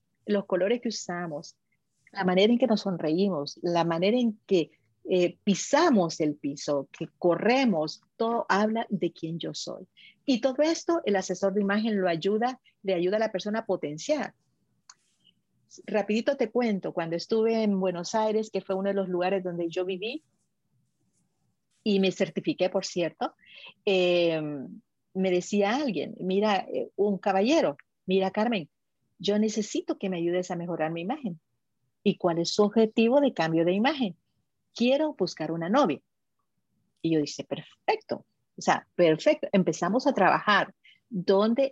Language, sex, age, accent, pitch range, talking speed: Spanish, female, 40-59, American, 170-220 Hz, 155 wpm